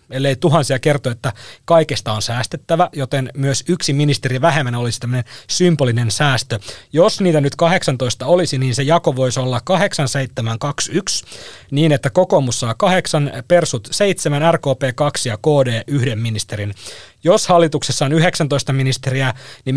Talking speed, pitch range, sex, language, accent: 135 wpm, 130-165 Hz, male, Finnish, native